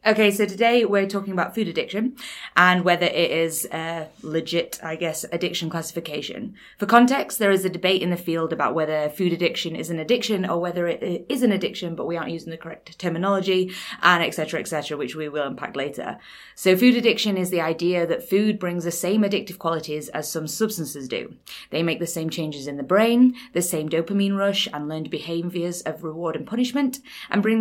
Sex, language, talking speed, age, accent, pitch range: female, English, 200 wpm, 20-39, British, 160-200 Hz